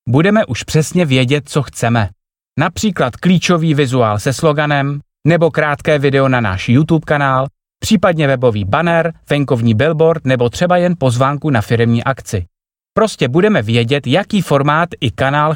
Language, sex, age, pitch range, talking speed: Czech, male, 30-49, 110-165 Hz, 145 wpm